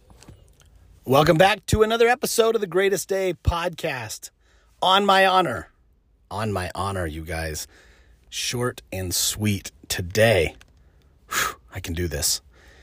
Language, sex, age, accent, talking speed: English, male, 30-49, American, 120 wpm